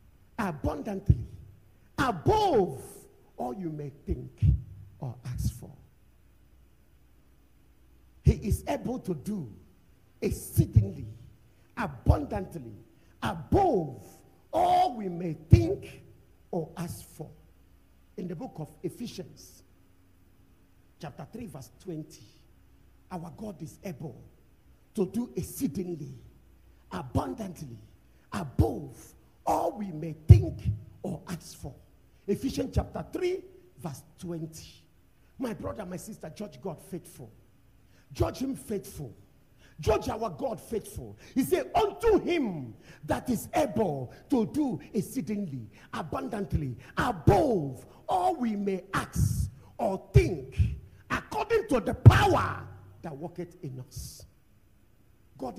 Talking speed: 105 wpm